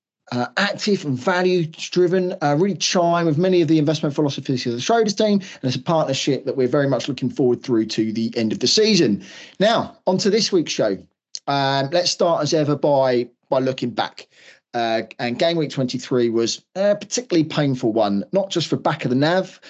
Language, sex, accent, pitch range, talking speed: English, male, British, 125-175 Hz, 200 wpm